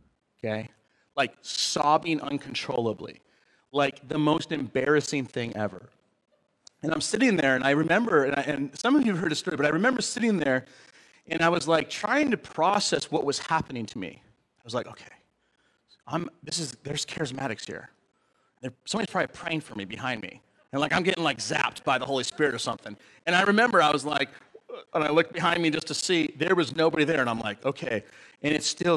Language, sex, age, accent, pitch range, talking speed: English, male, 30-49, American, 130-165 Hz, 205 wpm